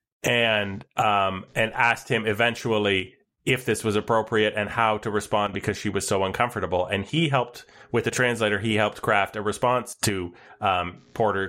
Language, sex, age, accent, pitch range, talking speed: English, male, 30-49, American, 100-135 Hz, 170 wpm